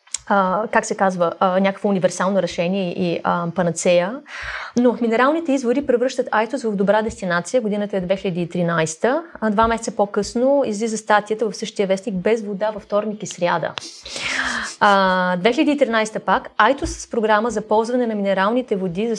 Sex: female